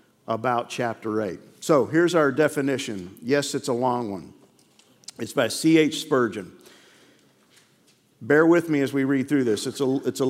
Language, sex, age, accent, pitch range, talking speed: English, male, 50-69, American, 125-150 Hz, 150 wpm